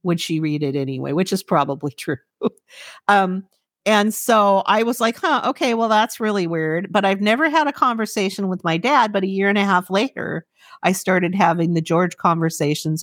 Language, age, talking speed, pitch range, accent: English, 50-69, 200 wpm, 165-205 Hz, American